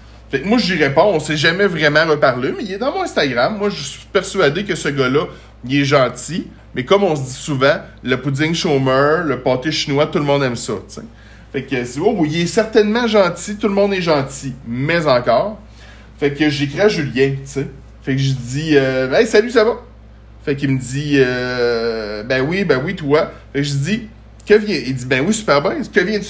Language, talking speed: French, 230 wpm